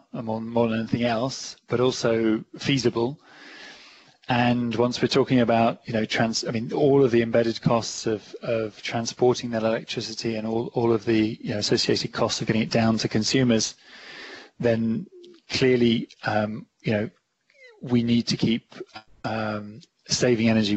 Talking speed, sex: 160 wpm, male